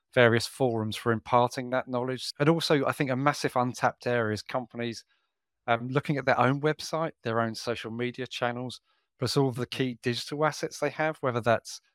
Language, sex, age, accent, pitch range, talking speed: English, male, 30-49, British, 115-135 Hz, 190 wpm